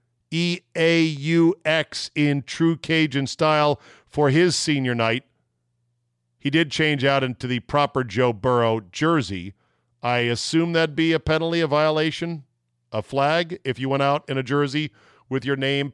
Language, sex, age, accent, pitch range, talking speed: English, male, 40-59, American, 120-160 Hz, 145 wpm